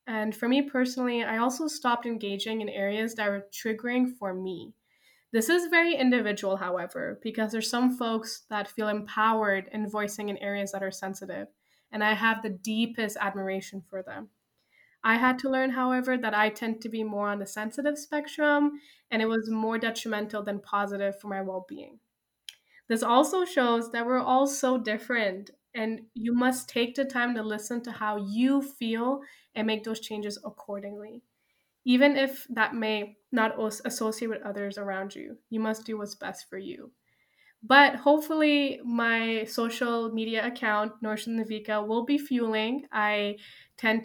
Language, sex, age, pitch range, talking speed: English, female, 10-29, 210-245 Hz, 165 wpm